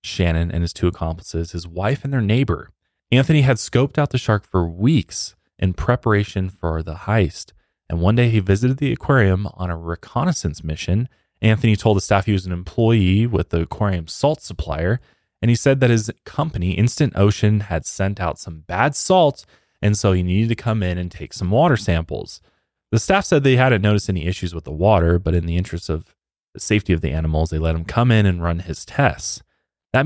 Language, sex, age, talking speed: English, male, 20-39, 210 wpm